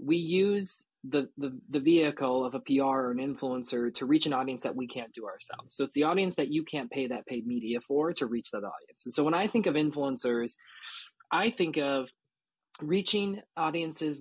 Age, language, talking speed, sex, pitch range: 20-39, English, 205 wpm, male, 130-175 Hz